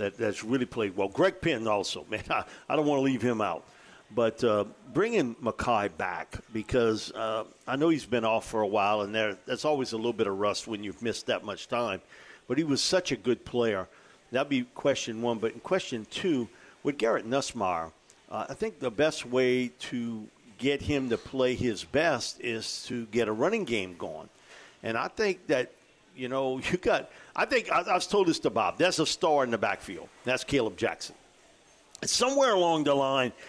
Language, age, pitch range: English, 50-69, 120-165 Hz